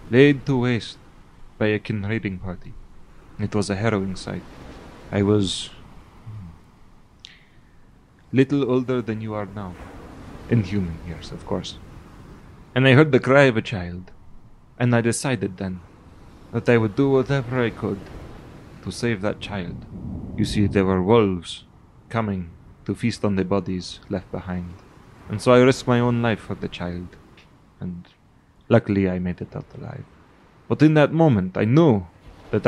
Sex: male